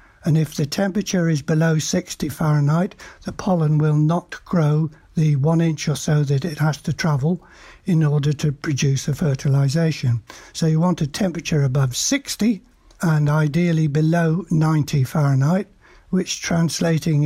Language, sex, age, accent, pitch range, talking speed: English, male, 60-79, British, 150-185 Hz, 150 wpm